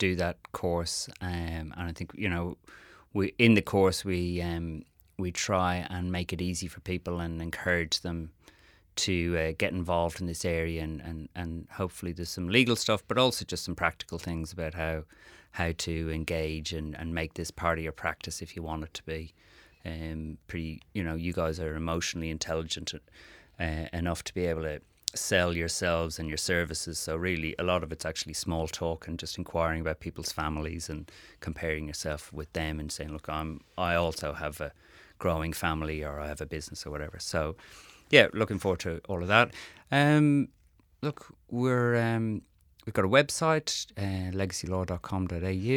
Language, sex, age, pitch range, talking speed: English, male, 30-49, 80-95 Hz, 185 wpm